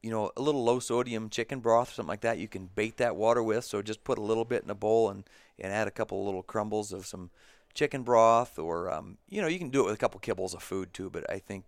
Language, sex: English, male